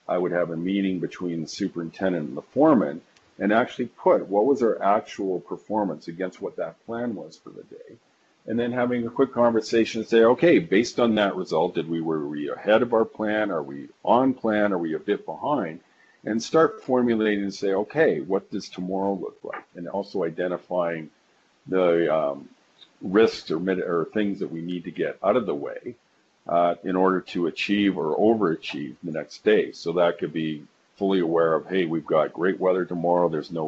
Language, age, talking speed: English, 50-69, 200 wpm